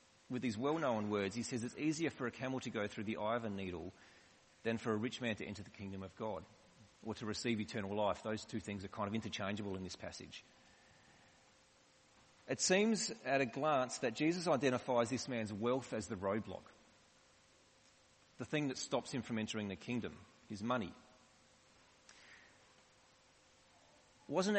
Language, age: English, 30-49